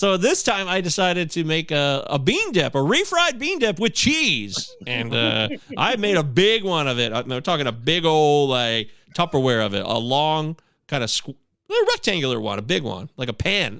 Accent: American